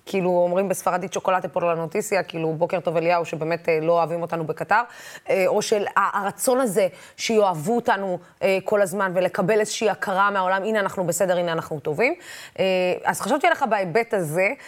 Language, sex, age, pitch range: Hebrew, female, 20-39, 190-245 Hz